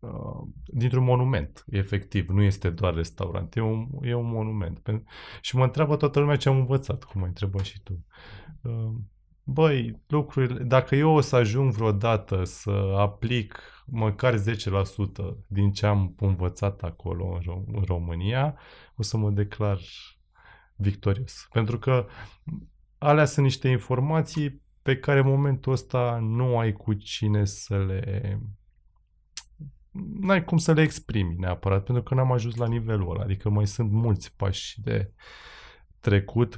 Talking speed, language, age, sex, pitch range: 140 wpm, Romanian, 20-39, male, 95-125 Hz